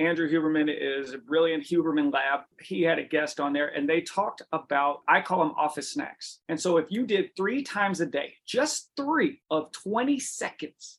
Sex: male